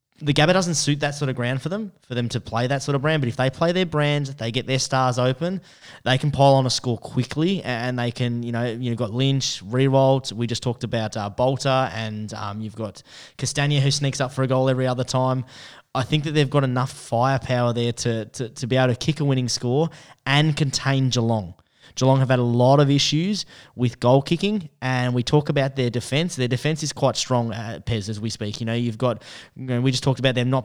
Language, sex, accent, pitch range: English, male, Australian, 120-140 Hz